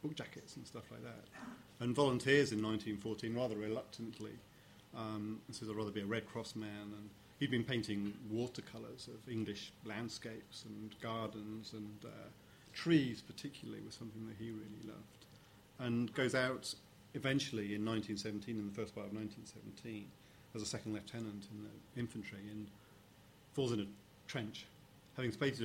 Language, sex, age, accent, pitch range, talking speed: English, male, 40-59, British, 105-120 Hz, 160 wpm